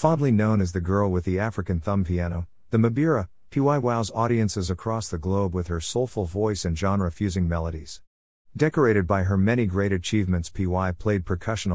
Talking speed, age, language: 175 wpm, 50-69, English